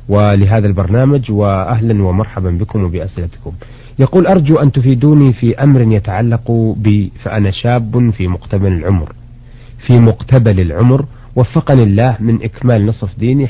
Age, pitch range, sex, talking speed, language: 40-59, 105-130 Hz, male, 125 wpm, Arabic